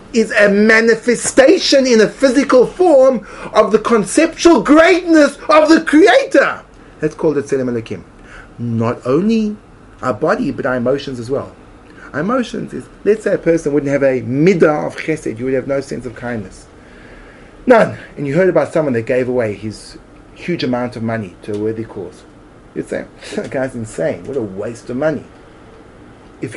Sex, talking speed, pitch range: male, 175 wpm, 135-210 Hz